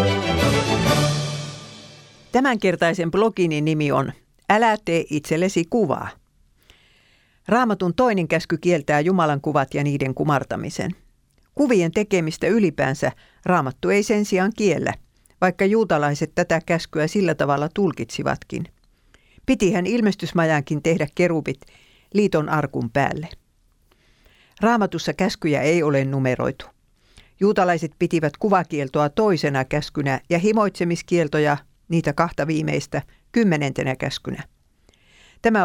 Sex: female